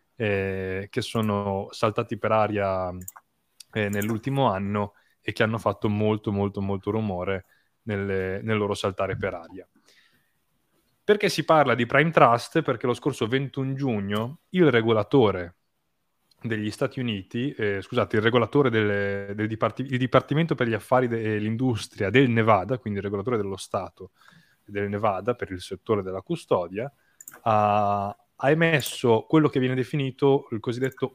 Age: 20-39